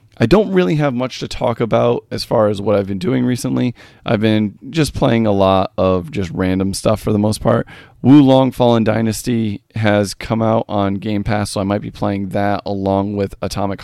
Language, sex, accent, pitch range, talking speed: English, male, American, 100-120 Hz, 215 wpm